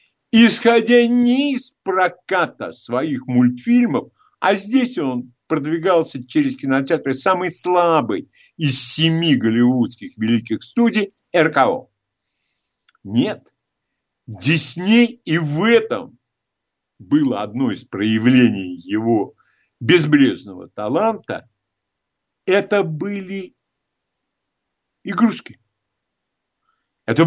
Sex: male